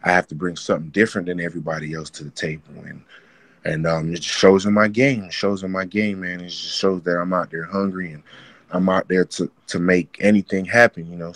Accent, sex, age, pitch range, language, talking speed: American, male, 20-39, 85-95 Hz, English, 245 wpm